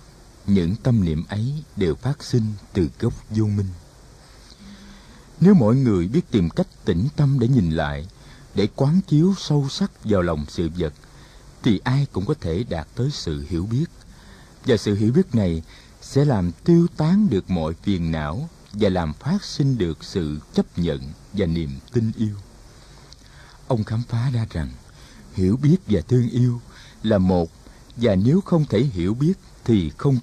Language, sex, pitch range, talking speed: Vietnamese, male, 90-135 Hz, 170 wpm